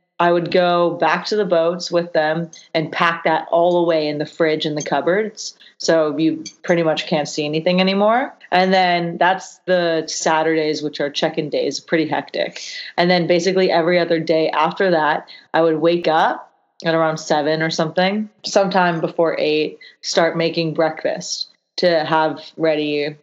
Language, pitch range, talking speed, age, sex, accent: English, 160-180 Hz, 170 wpm, 30-49, female, American